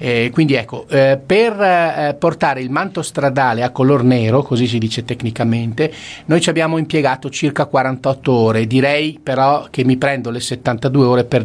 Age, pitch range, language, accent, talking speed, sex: 40-59, 115-140 Hz, Italian, native, 175 wpm, male